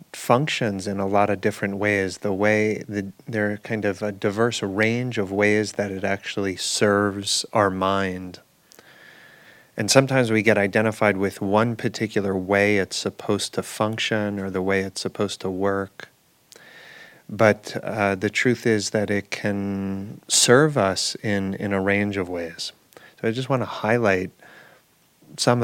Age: 30-49